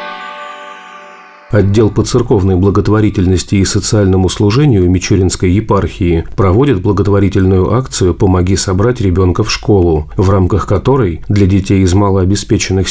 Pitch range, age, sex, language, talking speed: 90-105 Hz, 40-59, male, Russian, 110 wpm